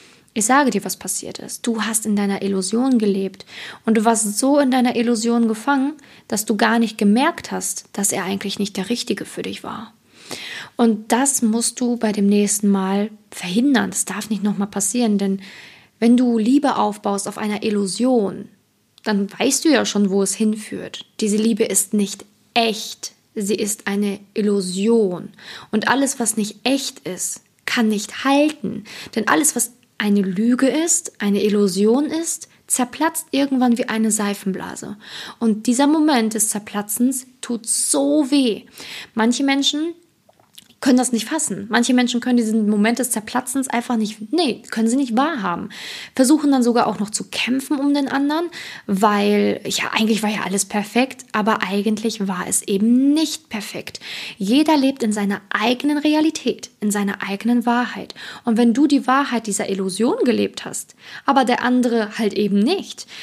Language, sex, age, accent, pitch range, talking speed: German, female, 20-39, German, 205-255 Hz, 165 wpm